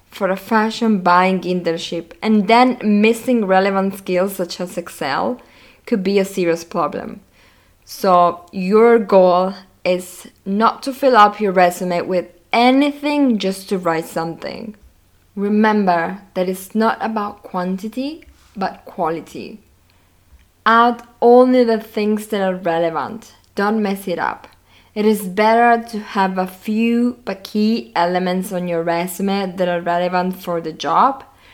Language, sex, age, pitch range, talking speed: English, female, 20-39, 180-225 Hz, 135 wpm